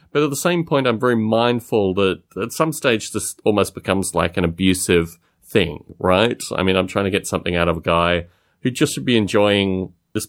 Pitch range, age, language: 90-135 Hz, 30-49, English